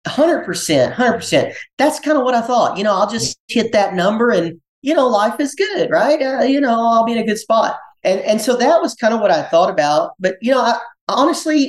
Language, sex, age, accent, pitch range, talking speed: English, male, 40-59, American, 140-195 Hz, 250 wpm